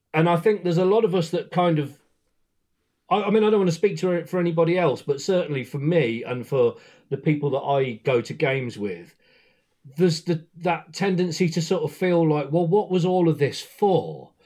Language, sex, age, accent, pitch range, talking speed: English, male, 40-59, British, 125-170 Hz, 220 wpm